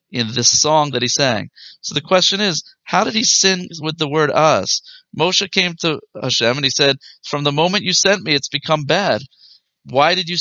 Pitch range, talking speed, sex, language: 125-185 Hz, 215 wpm, male, English